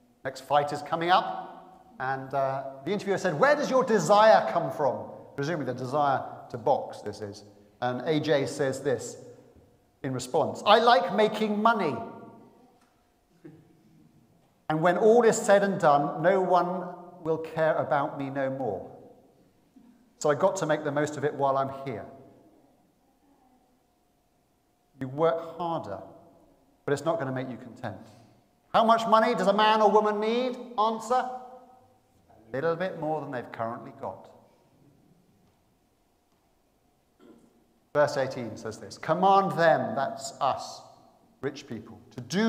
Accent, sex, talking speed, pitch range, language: British, male, 145 wpm, 130-195 Hz, English